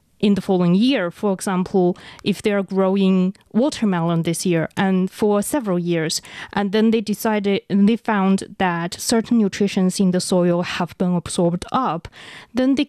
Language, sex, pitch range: English, female, 180-220 Hz